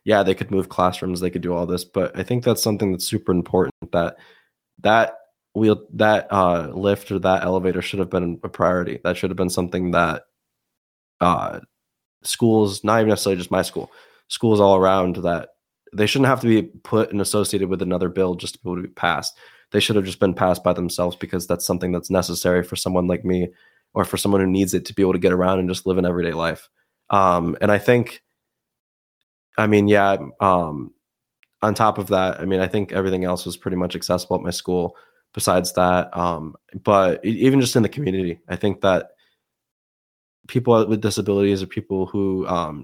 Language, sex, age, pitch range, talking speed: English, male, 20-39, 90-100 Hz, 205 wpm